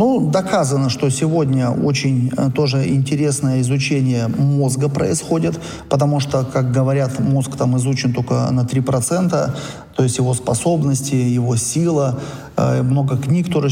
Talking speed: 130 wpm